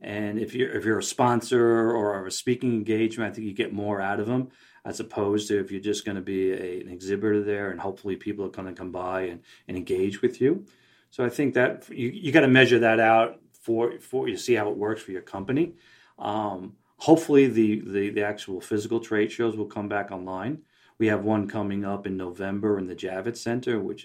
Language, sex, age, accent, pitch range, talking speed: English, male, 40-59, American, 95-115 Hz, 230 wpm